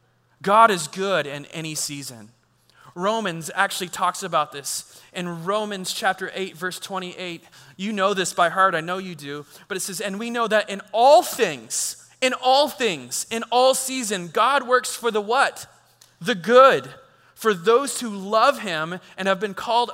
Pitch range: 185-240 Hz